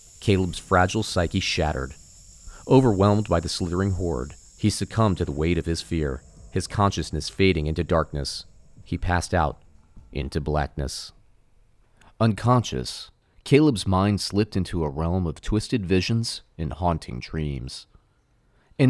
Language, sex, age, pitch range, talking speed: English, male, 30-49, 75-100 Hz, 130 wpm